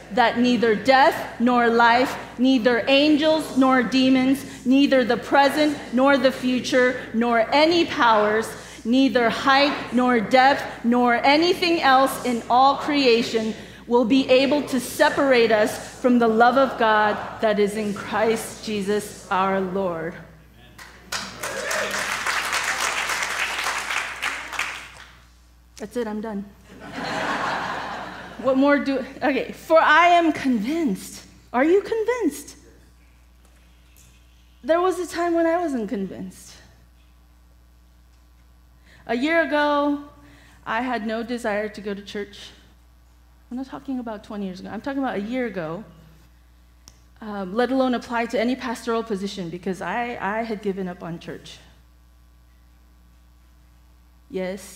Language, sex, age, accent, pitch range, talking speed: English, female, 30-49, American, 165-260 Hz, 120 wpm